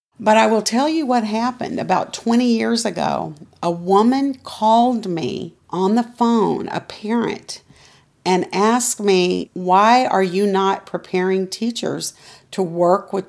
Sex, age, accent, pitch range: female, 50-69, American, 180-215 Hz